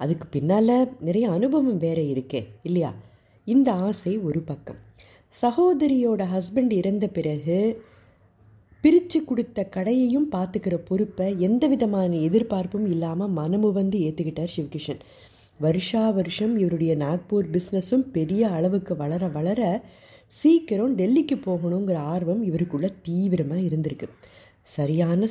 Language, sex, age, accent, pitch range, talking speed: Tamil, female, 30-49, native, 160-225 Hz, 105 wpm